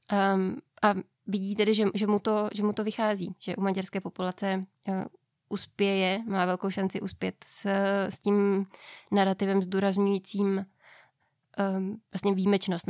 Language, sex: Czech, female